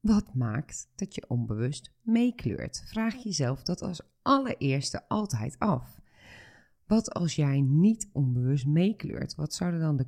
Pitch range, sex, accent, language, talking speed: 125-175 Hz, female, Dutch, Dutch, 135 wpm